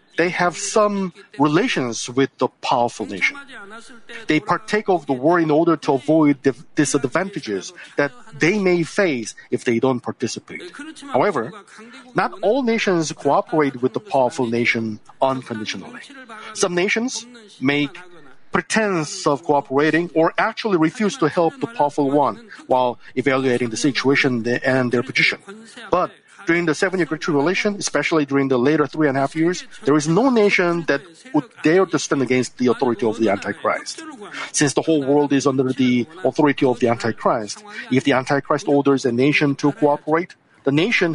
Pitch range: 135-180 Hz